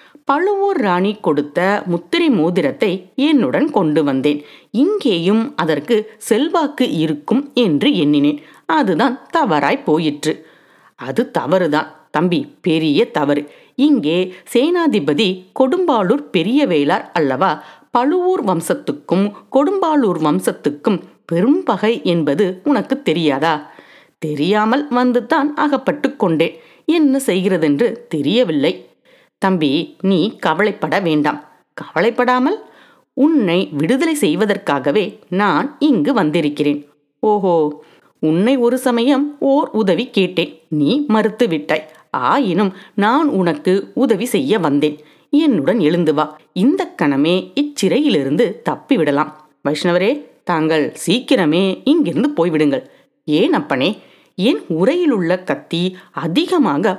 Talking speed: 95 wpm